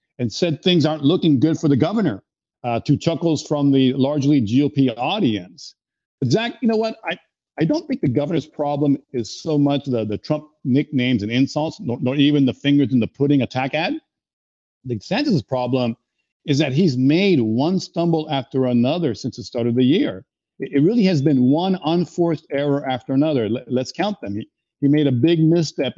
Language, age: English, 50-69